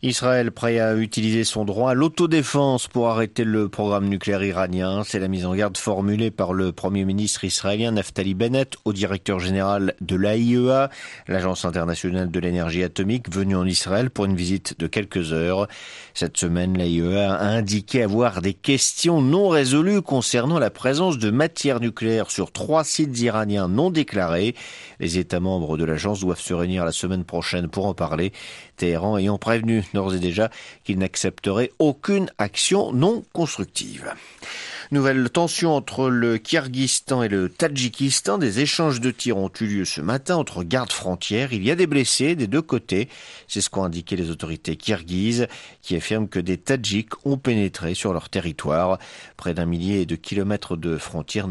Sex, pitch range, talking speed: male, 95-125 Hz, 170 wpm